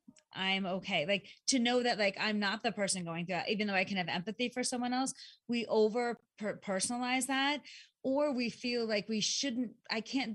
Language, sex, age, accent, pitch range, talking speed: English, female, 30-49, American, 205-260 Hz, 205 wpm